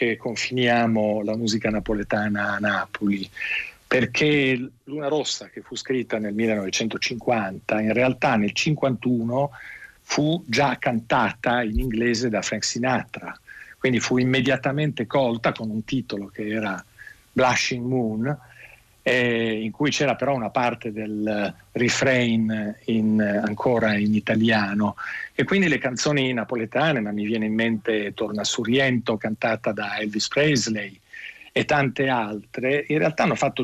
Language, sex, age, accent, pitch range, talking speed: Italian, male, 50-69, native, 110-140 Hz, 130 wpm